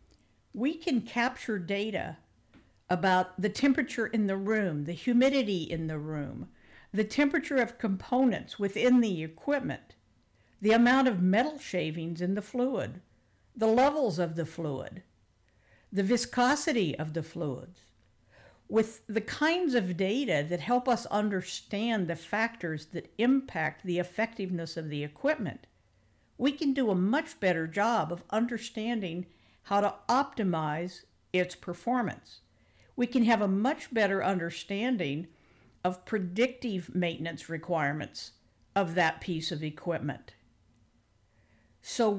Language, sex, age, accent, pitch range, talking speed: English, female, 60-79, American, 160-235 Hz, 125 wpm